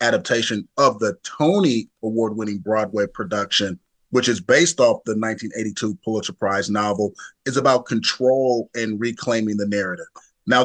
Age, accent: 30-49, American